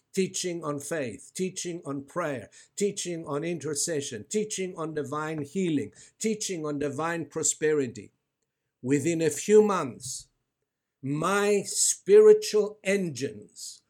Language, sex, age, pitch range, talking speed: English, male, 60-79, 140-190 Hz, 105 wpm